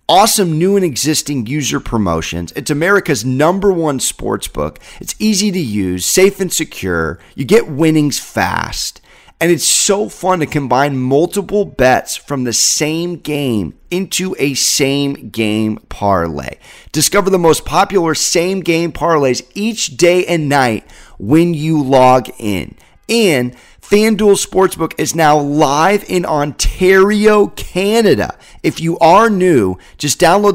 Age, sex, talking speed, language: 30-49, male, 135 wpm, English